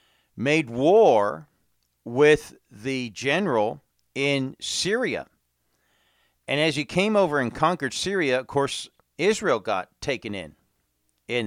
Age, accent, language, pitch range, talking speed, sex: 50-69, American, English, 90-140 Hz, 115 wpm, male